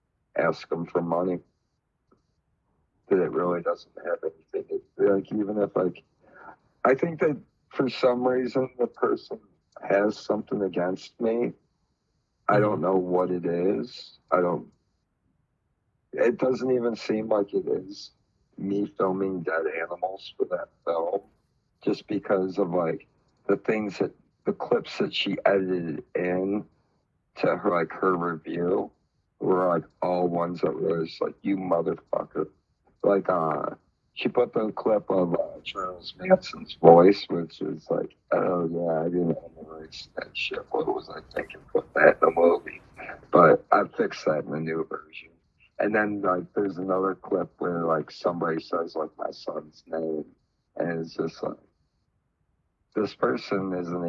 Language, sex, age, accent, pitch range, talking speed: English, male, 60-79, American, 85-120 Hz, 150 wpm